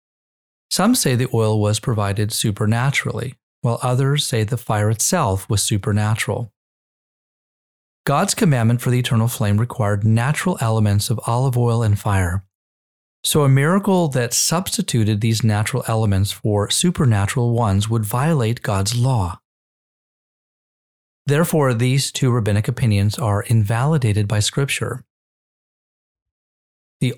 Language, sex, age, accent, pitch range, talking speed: English, male, 30-49, American, 105-130 Hz, 120 wpm